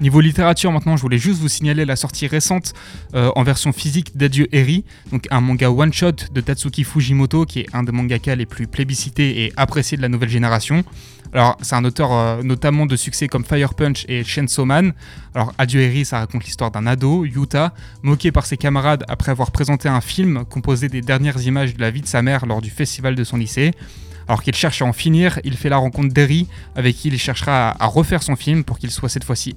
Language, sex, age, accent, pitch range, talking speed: French, male, 20-39, French, 120-145 Hz, 225 wpm